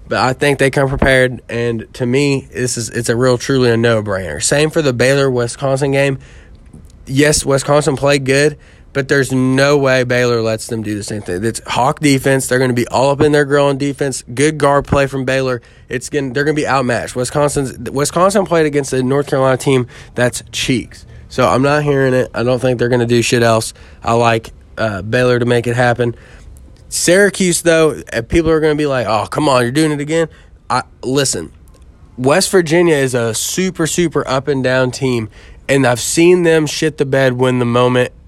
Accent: American